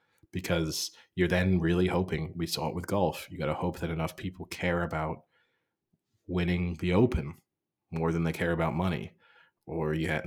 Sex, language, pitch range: male, English, 80-90 Hz